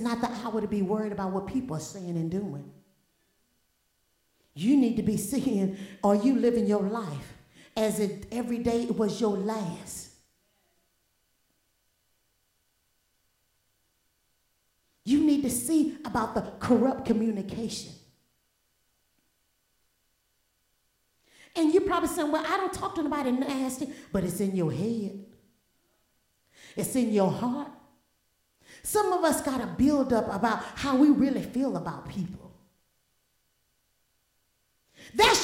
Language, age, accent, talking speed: English, 50-69, American, 125 wpm